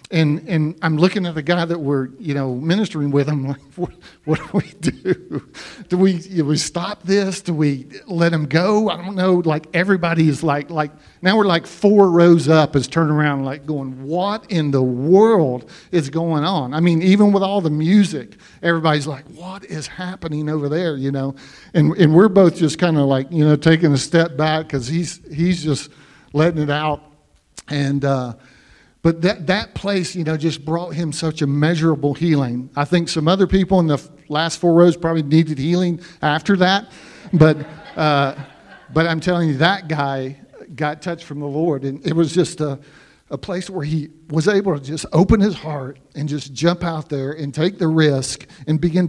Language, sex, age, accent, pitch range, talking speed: English, male, 50-69, American, 150-175 Hz, 200 wpm